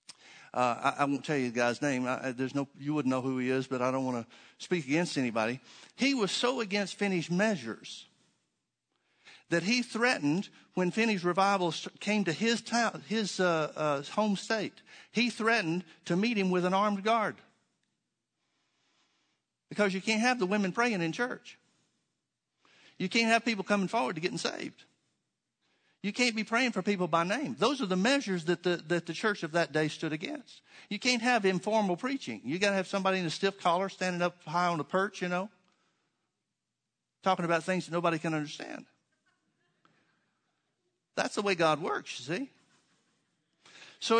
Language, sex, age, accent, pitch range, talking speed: English, male, 60-79, American, 160-215 Hz, 180 wpm